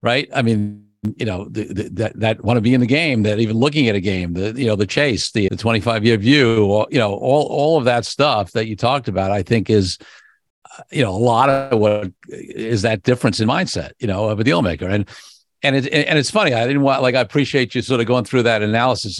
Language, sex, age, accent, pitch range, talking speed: English, male, 50-69, American, 105-130 Hz, 255 wpm